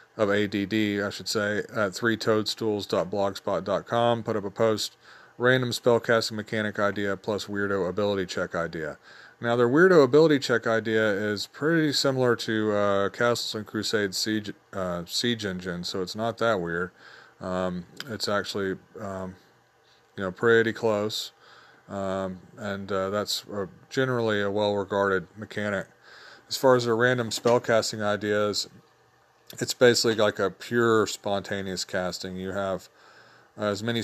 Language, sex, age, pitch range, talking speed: English, male, 30-49, 95-115 Hz, 140 wpm